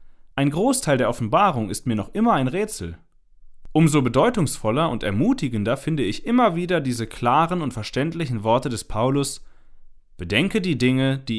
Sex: male